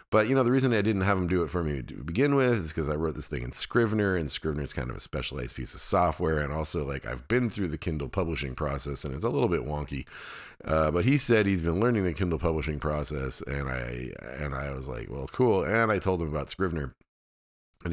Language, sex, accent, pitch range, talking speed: English, male, American, 70-100 Hz, 255 wpm